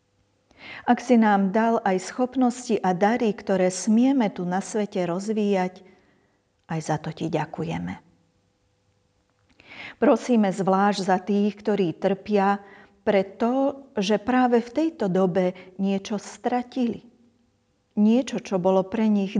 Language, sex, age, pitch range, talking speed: Slovak, female, 40-59, 170-220 Hz, 115 wpm